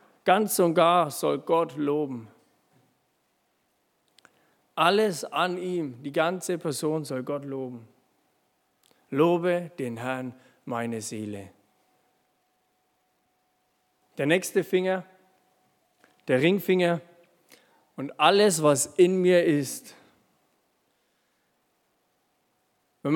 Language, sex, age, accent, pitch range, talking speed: German, male, 50-69, German, 155-200 Hz, 85 wpm